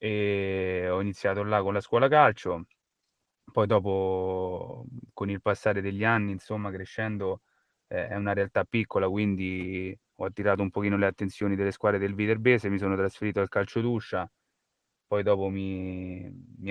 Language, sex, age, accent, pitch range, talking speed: Italian, male, 20-39, native, 100-110 Hz, 150 wpm